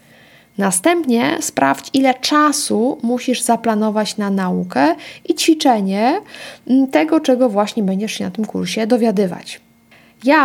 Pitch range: 195-265 Hz